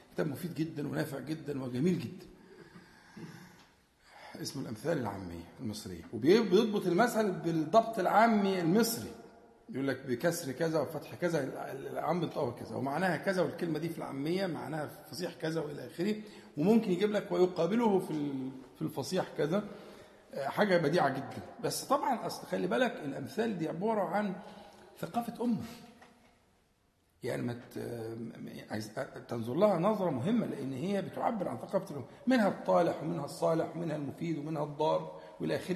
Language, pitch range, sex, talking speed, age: Arabic, 155-210 Hz, male, 130 wpm, 50-69